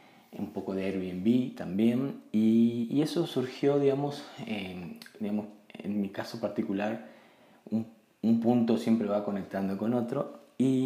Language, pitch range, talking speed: Spanish, 105-130 Hz, 140 wpm